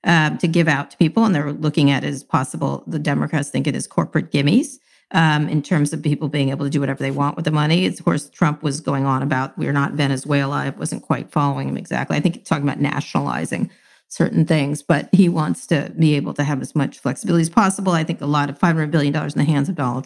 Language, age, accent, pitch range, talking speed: English, 40-59, American, 145-180 Hz, 255 wpm